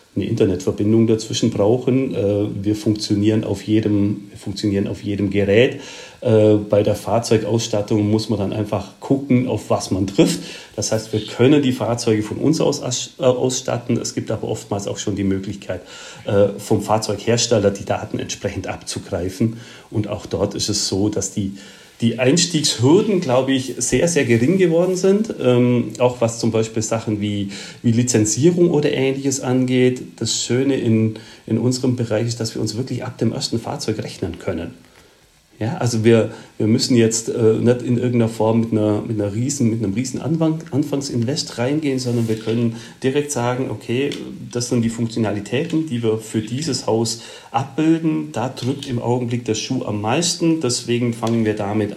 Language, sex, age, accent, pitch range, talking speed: German, male, 40-59, German, 110-130 Hz, 160 wpm